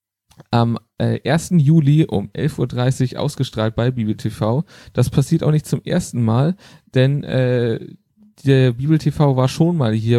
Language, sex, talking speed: German, male, 155 wpm